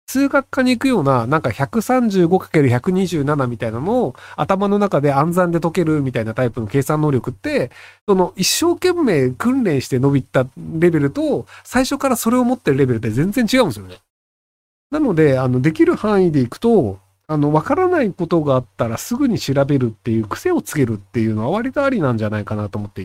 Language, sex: Japanese, male